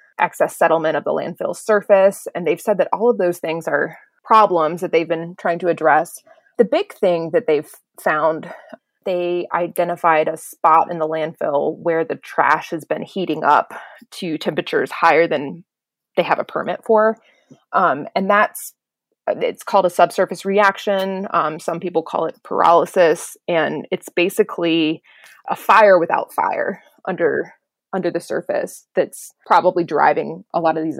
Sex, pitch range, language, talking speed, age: female, 165-225 Hz, English, 160 wpm, 20-39